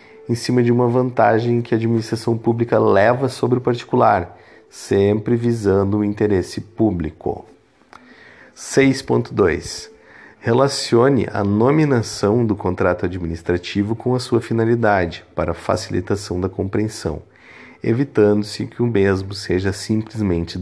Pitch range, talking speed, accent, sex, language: 100-115 Hz, 115 wpm, Brazilian, male, Portuguese